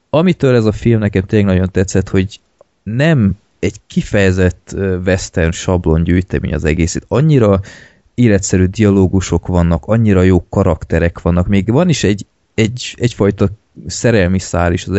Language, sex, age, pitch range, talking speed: Hungarian, male, 20-39, 90-105 Hz, 140 wpm